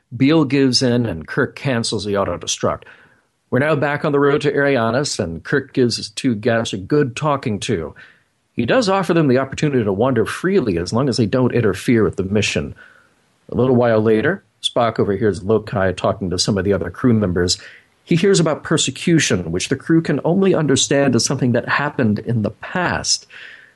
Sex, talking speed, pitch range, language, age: male, 190 wpm, 105-140 Hz, English, 40-59